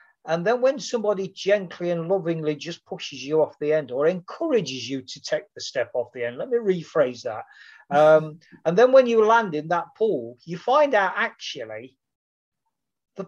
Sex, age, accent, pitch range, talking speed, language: male, 40-59, British, 140-195 Hz, 185 wpm, English